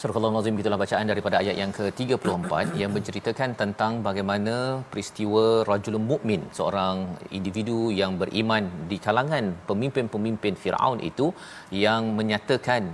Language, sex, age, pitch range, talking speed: Malayalam, male, 40-59, 100-120 Hz, 125 wpm